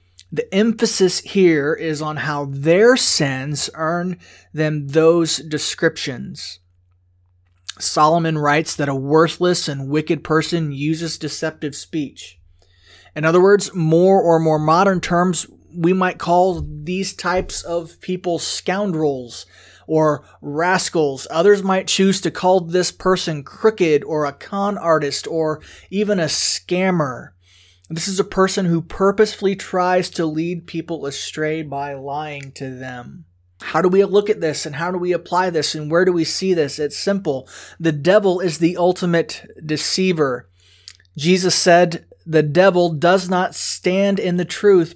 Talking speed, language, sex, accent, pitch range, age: 145 wpm, English, male, American, 150-180 Hz, 30-49